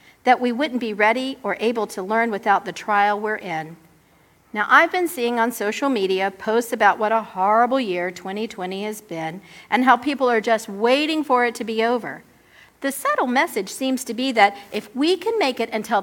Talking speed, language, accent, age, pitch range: 200 wpm, English, American, 50-69, 200-260 Hz